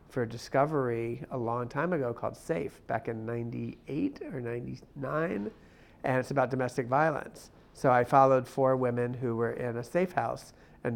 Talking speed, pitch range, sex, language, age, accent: 170 wpm, 120-140 Hz, male, English, 50-69, American